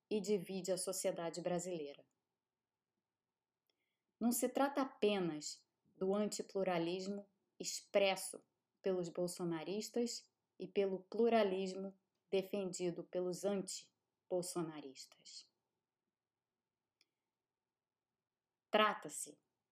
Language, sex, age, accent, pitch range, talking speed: Portuguese, female, 20-39, Brazilian, 175-210 Hz, 65 wpm